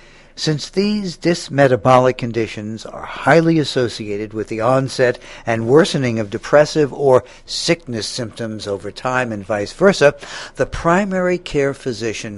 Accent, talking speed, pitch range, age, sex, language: American, 125 wpm, 105-140 Hz, 60-79, male, English